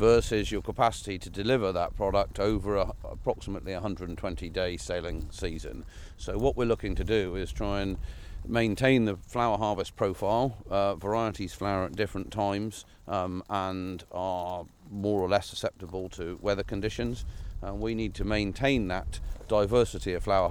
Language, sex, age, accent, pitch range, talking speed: English, male, 40-59, British, 90-105 Hz, 155 wpm